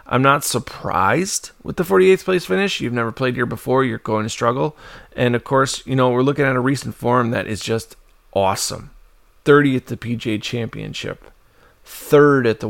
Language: English